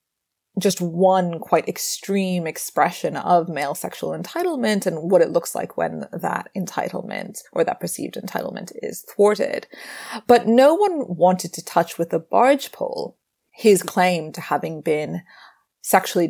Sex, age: female, 30-49